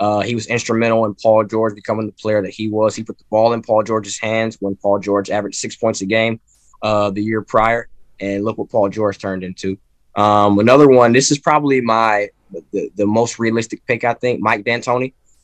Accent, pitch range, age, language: American, 105-120 Hz, 10-29, English